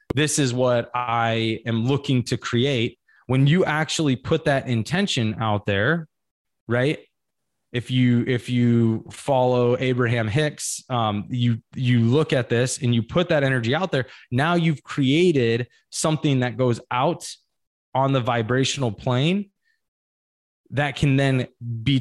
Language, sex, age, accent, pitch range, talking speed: English, male, 20-39, American, 120-150 Hz, 140 wpm